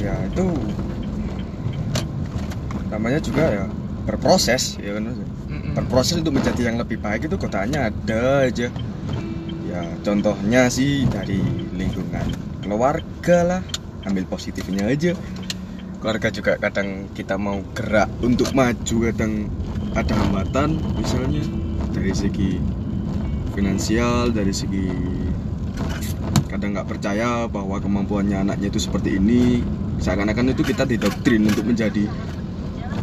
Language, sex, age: Indonesian, male, 20-39